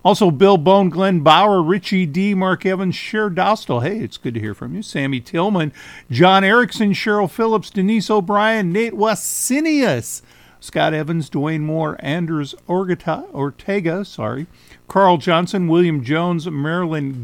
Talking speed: 145 wpm